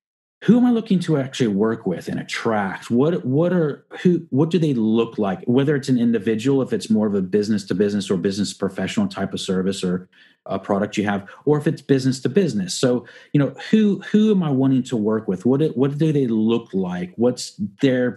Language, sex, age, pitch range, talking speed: English, male, 30-49, 110-180 Hz, 220 wpm